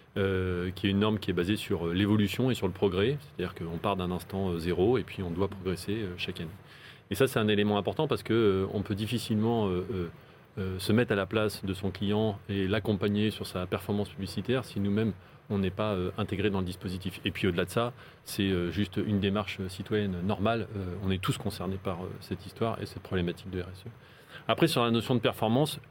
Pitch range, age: 95-115 Hz, 30-49